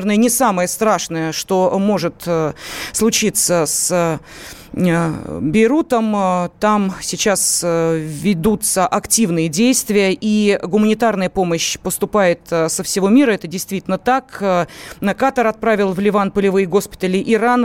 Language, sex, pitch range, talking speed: Russian, female, 180-225 Hz, 110 wpm